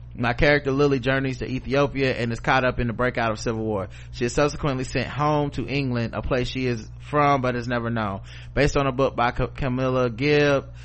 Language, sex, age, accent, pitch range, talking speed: English, male, 20-39, American, 110-125 Hz, 215 wpm